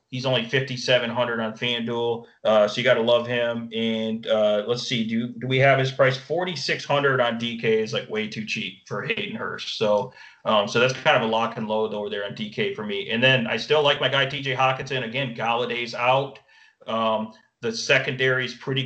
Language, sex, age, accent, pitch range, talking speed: English, male, 30-49, American, 115-130 Hz, 215 wpm